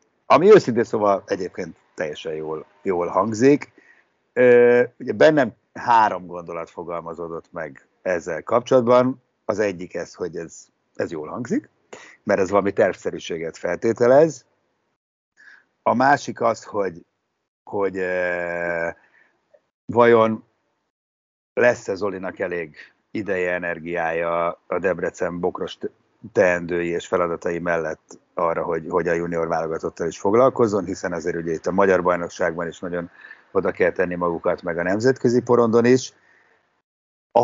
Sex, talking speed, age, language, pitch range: male, 120 wpm, 60-79, Hungarian, 85-125 Hz